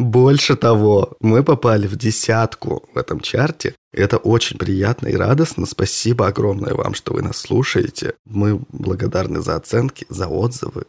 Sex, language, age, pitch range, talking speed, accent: male, Russian, 20-39, 100-125 Hz, 150 wpm, native